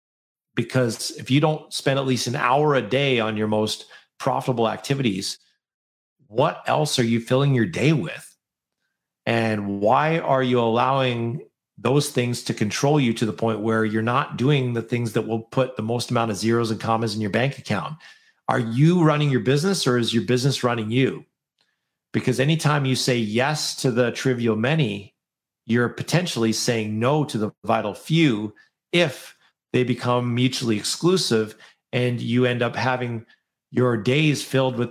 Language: English